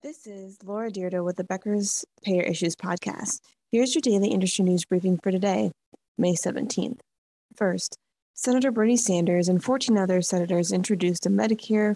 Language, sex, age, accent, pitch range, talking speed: English, female, 20-39, American, 180-220 Hz, 155 wpm